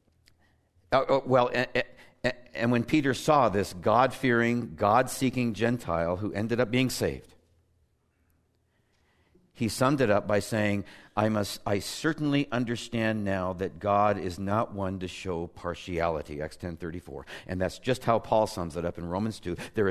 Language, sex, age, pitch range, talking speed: English, male, 60-79, 90-125 Hz, 155 wpm